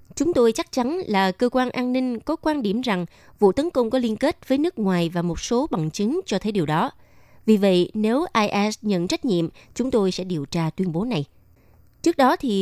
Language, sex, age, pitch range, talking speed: Vietnamese, female, 20-39, 175-235 Hz, 235 wpm